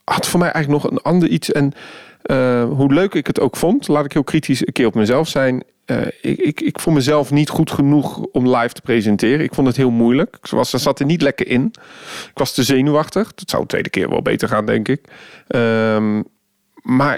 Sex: male